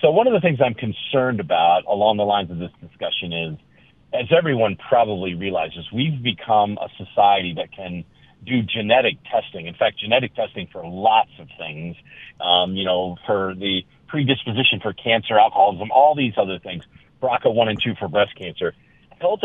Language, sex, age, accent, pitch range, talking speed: English, male, 40-59, American, 100-140 Hz, 175 wpm